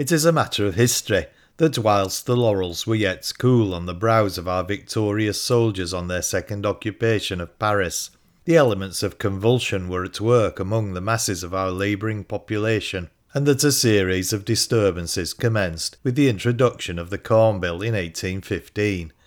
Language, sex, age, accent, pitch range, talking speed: English, male, 40-59, British, 95-120 Hz, 175 wpm